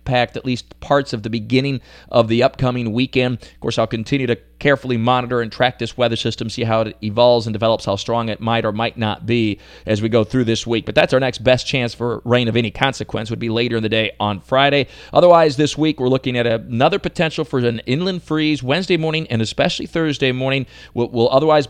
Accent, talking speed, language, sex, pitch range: American, 225 wpm, English, male, 115-150 Hz